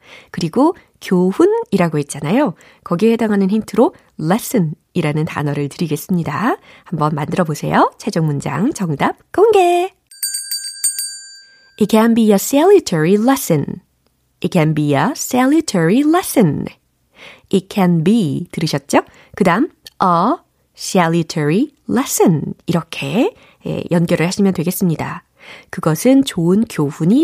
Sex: female